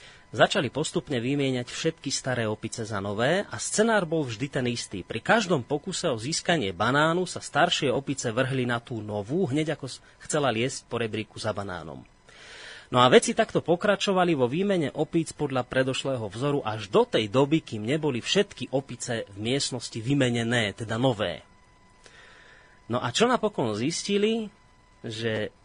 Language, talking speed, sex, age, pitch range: Slovak, 150 wpm, male, 30-49, 110-150 Hz